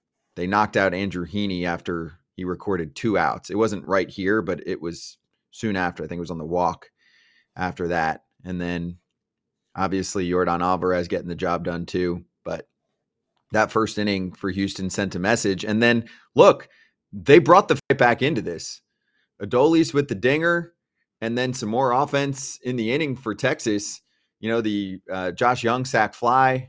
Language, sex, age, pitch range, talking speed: English, male, 30-49, 95-125 Hz, 180 wpm